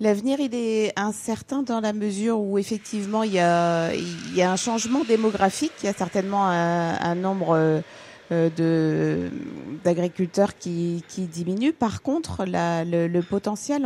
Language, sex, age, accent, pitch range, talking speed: French, female, 50-69, French, 165-205 Hz, 160 wpm